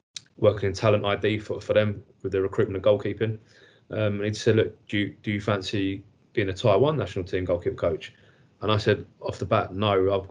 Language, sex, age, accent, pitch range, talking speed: English, male, 20-39, British, 95-115 Hz, 220 wpm